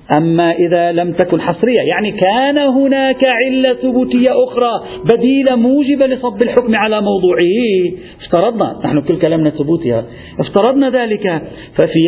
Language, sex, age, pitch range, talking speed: Arabic, male, 50-69, 170-245 Hz, 125 wpm